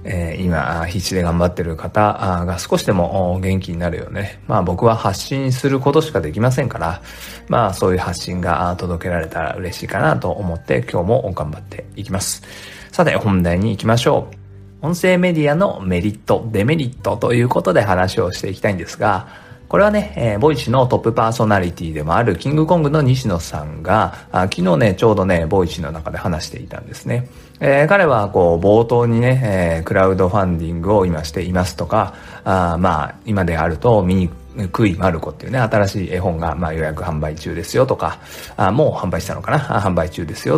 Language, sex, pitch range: Japanese, male, 90-125 Hz